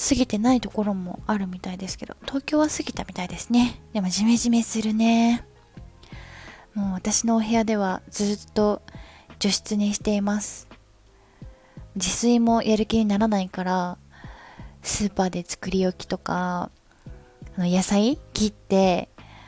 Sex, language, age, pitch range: female, Japanese, 20-39, 180-220 Hz